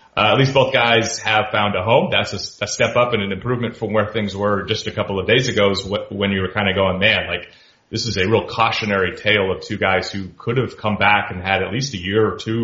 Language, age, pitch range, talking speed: English, 30-49, 95-115 Hz, 280 wpm